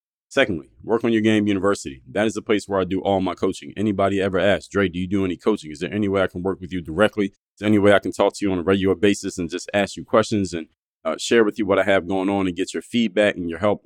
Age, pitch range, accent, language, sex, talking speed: 30-49, 90-105 Hz, American, English, male, 305 wpm